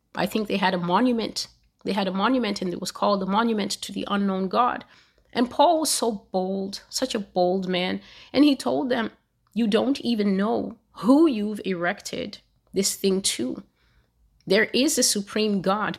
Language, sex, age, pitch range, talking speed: English, female, 30-49, 180-210 Hz, 180 wpm